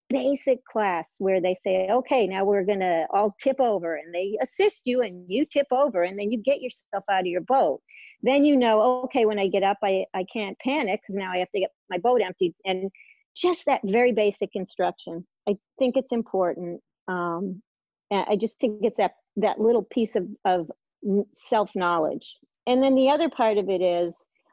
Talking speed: 200 wpm